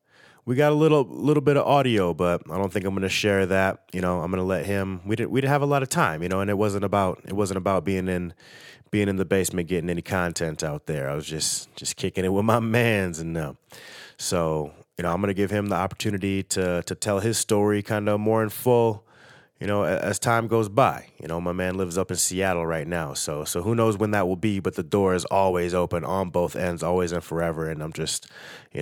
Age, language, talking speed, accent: 30-49, English, 260 wpm, American